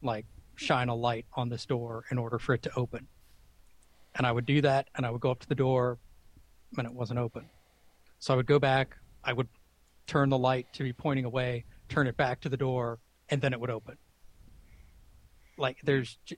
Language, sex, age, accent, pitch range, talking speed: English, male, 30-49, American, 115-135 Hz, 210 wpm